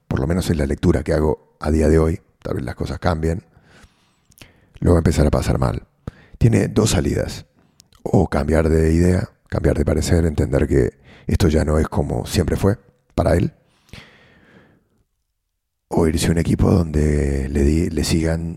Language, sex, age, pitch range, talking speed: English, male, 40-59, 75-95 Hz, 180 wpm